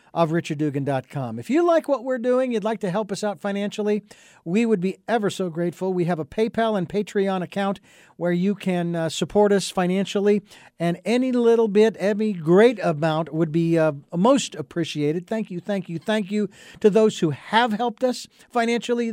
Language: English